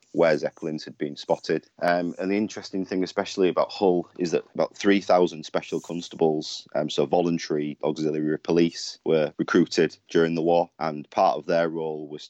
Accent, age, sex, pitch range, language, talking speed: British, 30-49, male, 75-85 Hz, English, 170 wpm